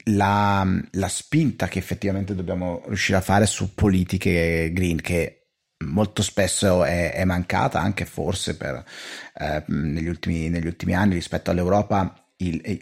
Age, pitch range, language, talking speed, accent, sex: 30-49, 90-105 Hz, Italian, 140 wpm, native, male